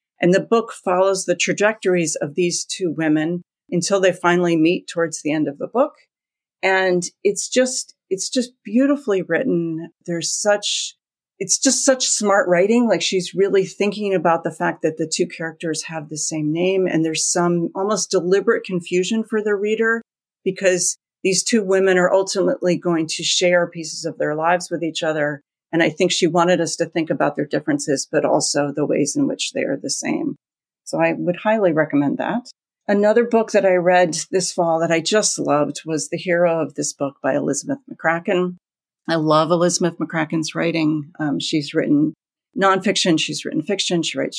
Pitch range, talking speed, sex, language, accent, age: 160-195 Hz, 180 wpm, female, English, American, 40-59